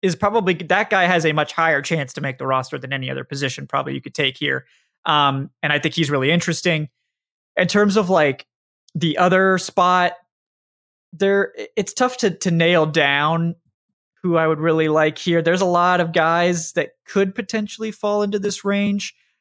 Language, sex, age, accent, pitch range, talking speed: English, male, 20-39, American, 150-180 Hz, 190 wpm